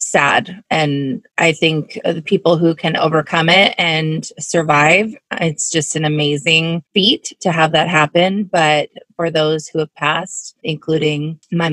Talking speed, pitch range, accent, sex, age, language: 150 wpm, 150-185 Hz, American, female, 20-39, English